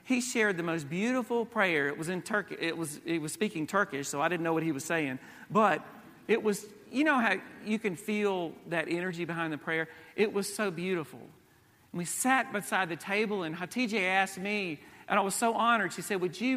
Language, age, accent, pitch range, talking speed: English, 40-59, American, 155-205 Hz, 220 wpm